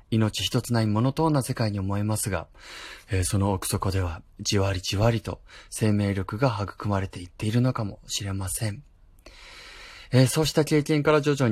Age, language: 20-39, Japanese